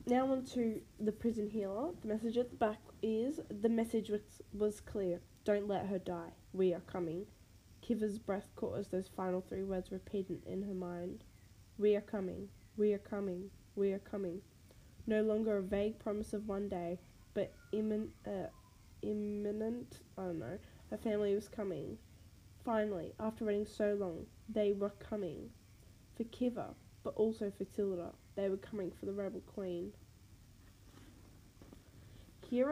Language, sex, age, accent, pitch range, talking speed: English, female, 10-29, Australian, 185-220 Hz, 160 wpm